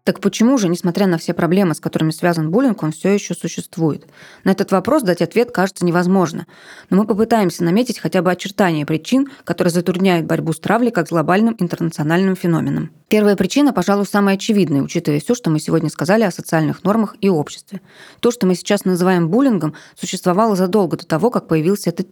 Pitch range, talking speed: 165-200 Hz, 185 wpm